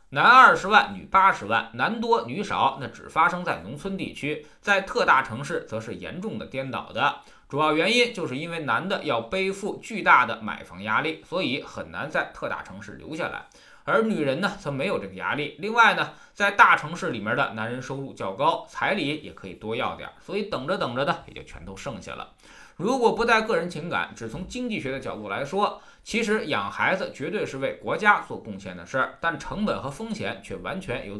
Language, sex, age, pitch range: Chinese, male, 20-39, 135-215 Hz